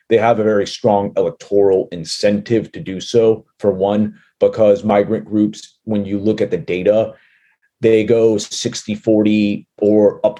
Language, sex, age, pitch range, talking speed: English, male, 30-49, 100-115 Hz, 155 wpm